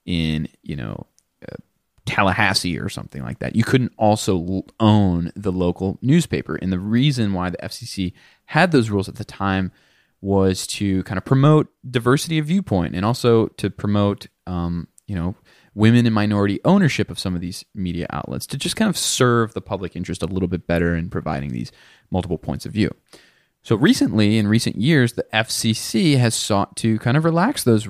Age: 20-39